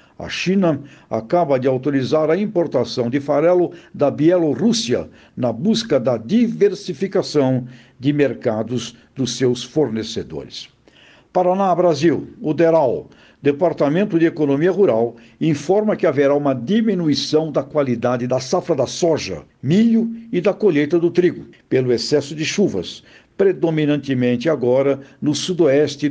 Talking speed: 120 wpm